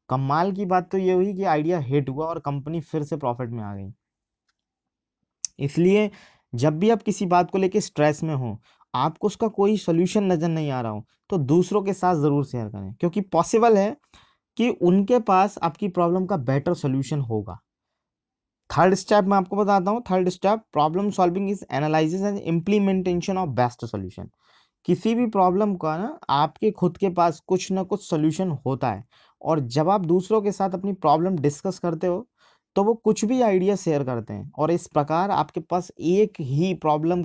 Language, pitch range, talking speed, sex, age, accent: Hindi, 145-200 Hz, 130 wpm, male, 20-39, native